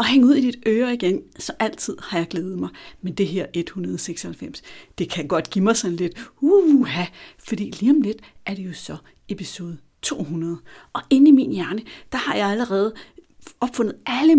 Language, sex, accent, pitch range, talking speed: Danish, female, native, 180-230 Hz, 190 wpm